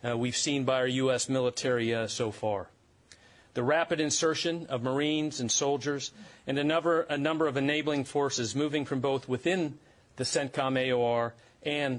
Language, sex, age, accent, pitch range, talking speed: English, male, 40-59, American, 130-160 Hz, 160 wpm